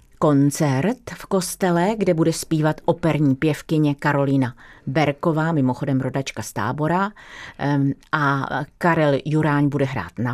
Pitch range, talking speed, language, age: 140-185 Hz, 115 wpm, Czech, 40-59